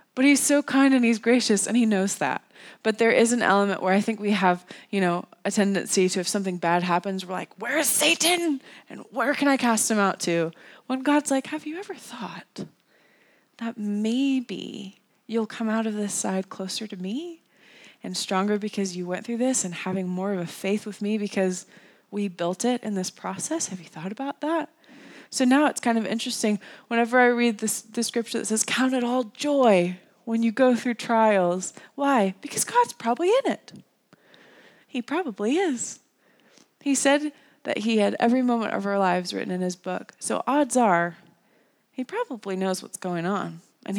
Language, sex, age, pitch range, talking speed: English, female, 20-39, 195-255 Hz, 195 wpm